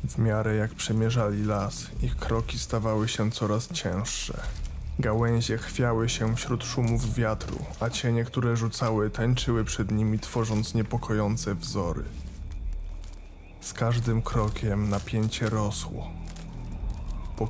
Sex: male